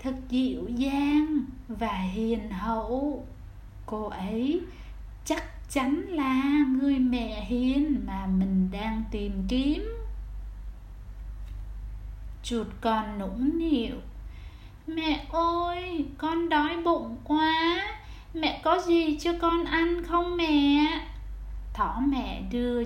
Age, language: 20-39, Vietnamese